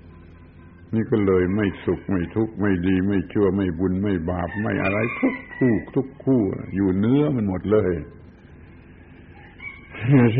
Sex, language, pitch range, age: male, Thai, 100-115 Hz, 70-89